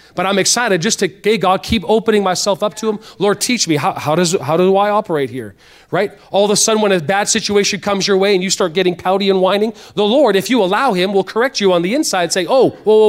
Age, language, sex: 30-49, English, male